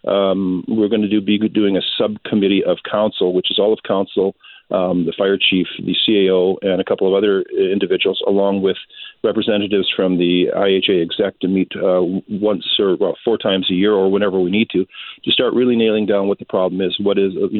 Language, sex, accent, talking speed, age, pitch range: English, male, American, 210 wpm, 40-59, 95-105 Hz